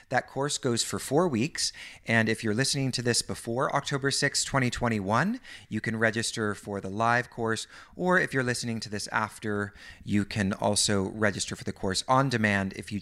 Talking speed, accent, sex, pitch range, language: 190 wpm, American, male, 100-120 Hz, English